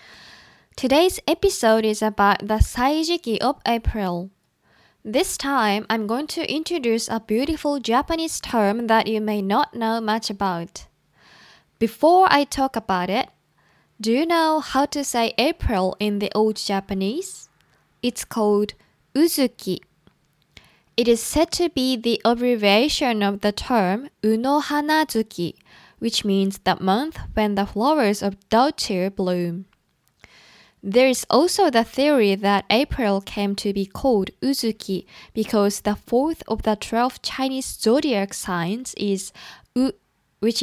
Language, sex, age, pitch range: Japanese, female, 10-29, 200-265 Hz